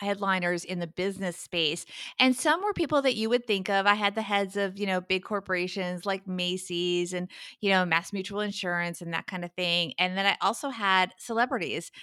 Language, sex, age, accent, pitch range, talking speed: English, female, 30-49, American, 185-220 Hz, 210 wpm